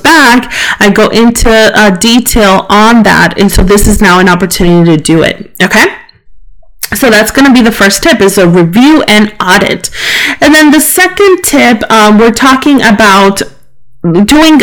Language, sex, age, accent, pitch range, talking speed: English, female, 30-49, American, 185-230 Hz, 170 wpm